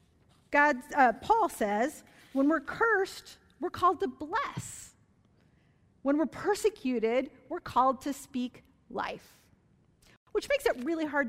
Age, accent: 40-59, American